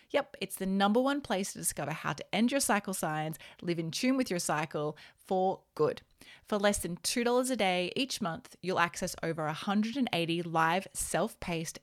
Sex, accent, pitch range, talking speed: female, Australian, 170-220 Hz, 185 wpm